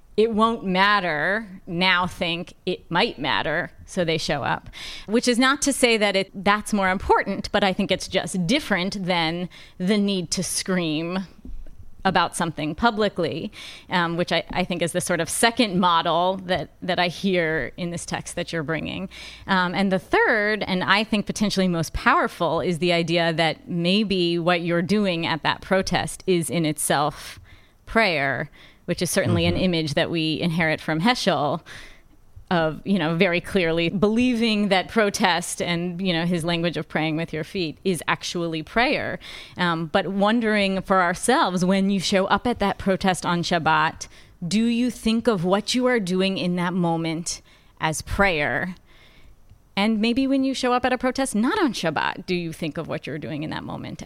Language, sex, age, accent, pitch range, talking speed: English, female, 30-49, American, 165-200 Hz, 180 wpm